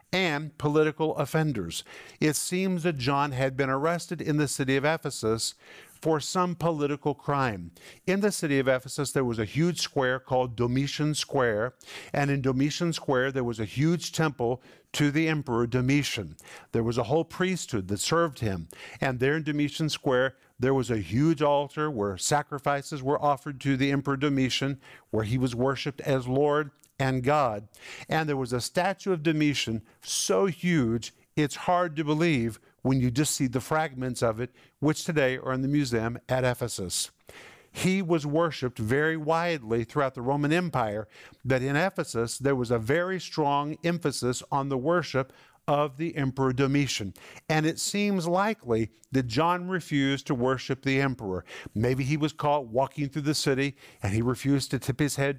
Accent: American